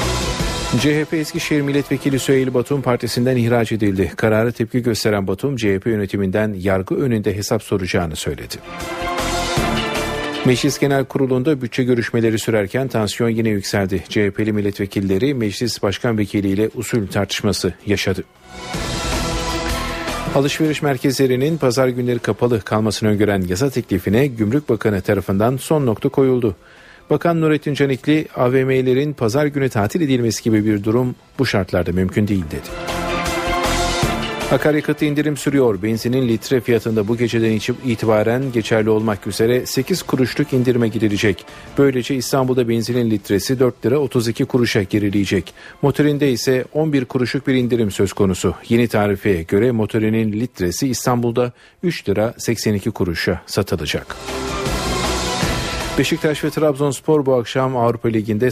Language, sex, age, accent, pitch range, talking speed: Turkish, male, 50-69, native, 105-130 Hz, 120 wpm